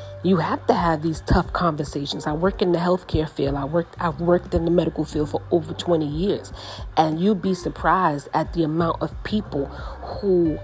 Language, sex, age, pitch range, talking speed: English, female, 40-59, 135-170 Hz, 195 wpm